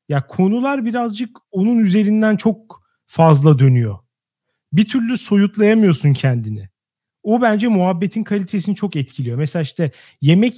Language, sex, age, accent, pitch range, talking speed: Turkish, male, 40-59, native, 155-210 Hz, 120 wpm